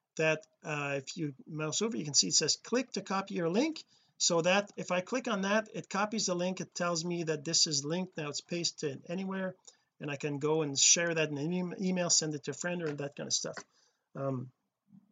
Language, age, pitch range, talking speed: English, 40-59, 150-200 Hz, 235 wpm